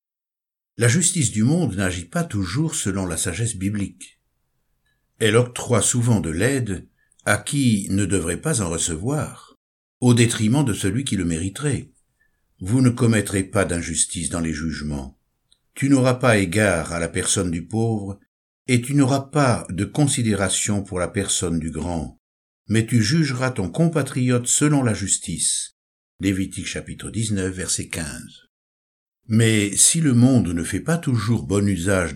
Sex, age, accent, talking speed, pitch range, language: male, 60-79, French, 150 wpm, 85-125 Hz, French